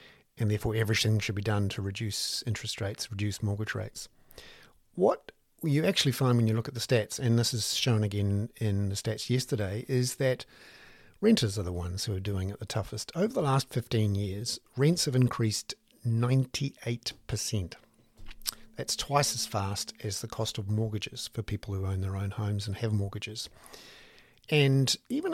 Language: English